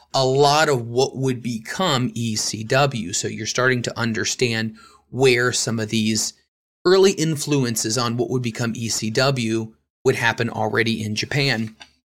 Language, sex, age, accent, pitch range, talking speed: English, male, 30-49, American, 115-145 Hz, 140 wpm